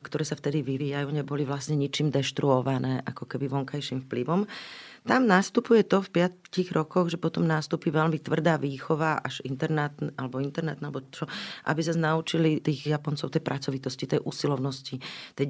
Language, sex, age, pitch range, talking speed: Slovak, female, 40-59, 135-160 Hz, 145 wpm